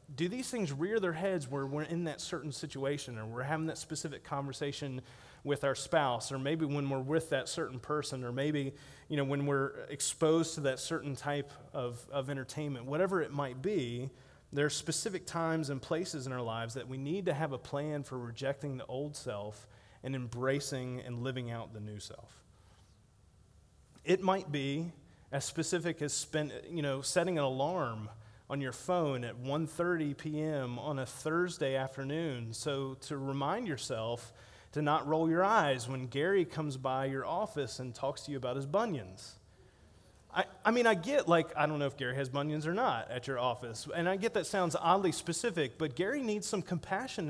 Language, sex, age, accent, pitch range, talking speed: English, male, 30-49, American, 130-170 Hz, 190 wpm